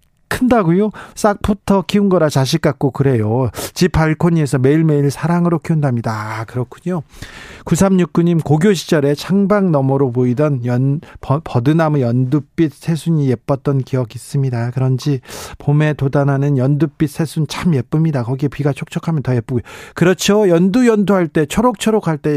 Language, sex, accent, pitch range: Korean, male, native, 135-175 Hz